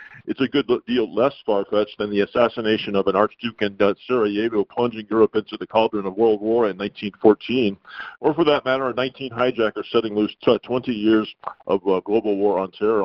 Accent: American